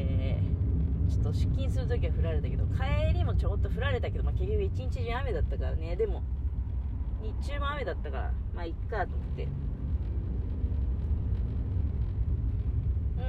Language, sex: Japanese, female